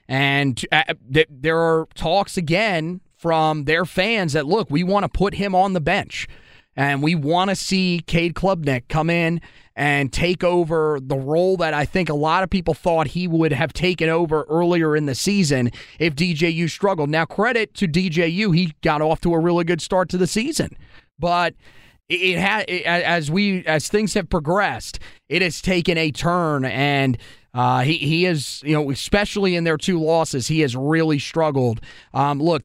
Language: English